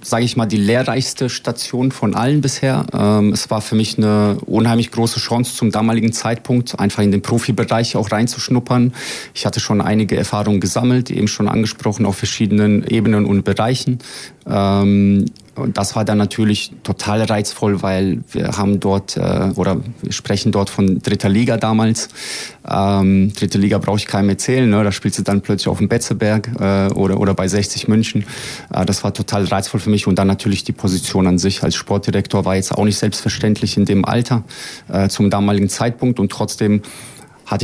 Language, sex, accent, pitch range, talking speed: German, male, German, 100-115 Hz, 180 wpm